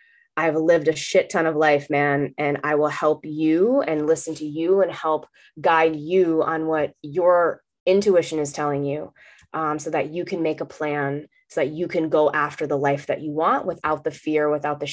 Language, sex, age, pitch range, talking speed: English, female, 20-39, 155-210 Hz, 210 wpm